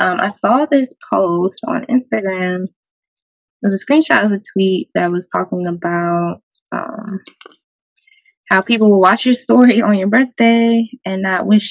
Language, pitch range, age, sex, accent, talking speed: English, 175-225 Hz, 20-39, female, American, 160 wpm